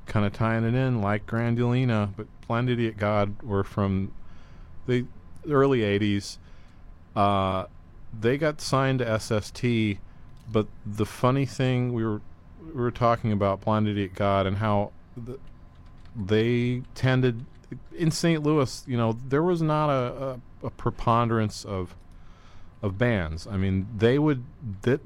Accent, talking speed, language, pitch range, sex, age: American, 145 wpm, English, 85-115 Hz, male, 40-59